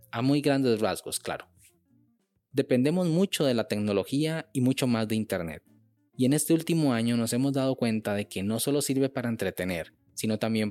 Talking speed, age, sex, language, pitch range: 185 wpm, 20-39, male, Spanish, 110-135 Hz